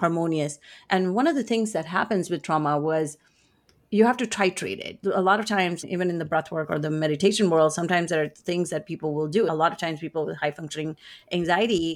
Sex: female